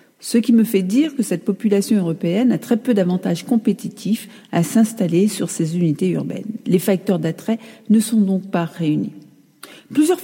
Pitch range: 195-255 Hz